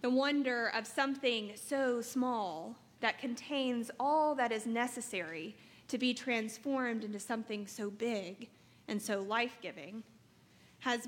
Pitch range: 215-250 Hz